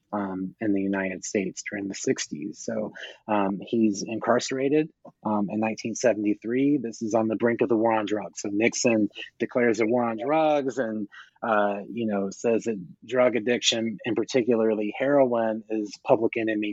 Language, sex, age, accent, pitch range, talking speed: English, male, 30-49, American, 115-145 Hz, 165 wpm